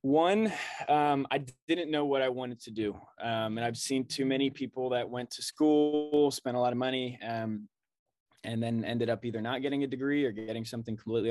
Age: 20-39